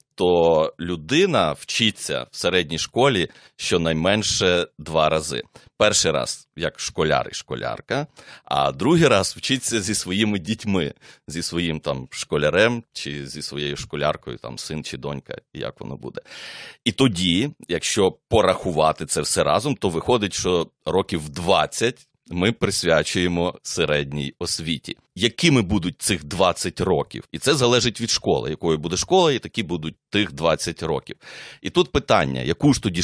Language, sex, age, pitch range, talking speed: Ukrainian, male, 30-49, 80-105 Hz, 140 wpm